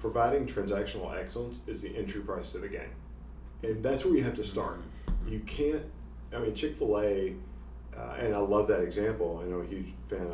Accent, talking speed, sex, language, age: American, 185 wpm, male, English, 40-59